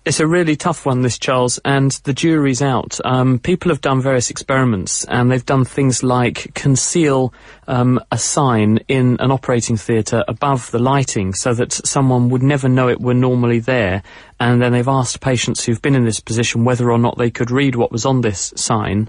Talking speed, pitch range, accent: 200 wpm, 115-130 Hz, British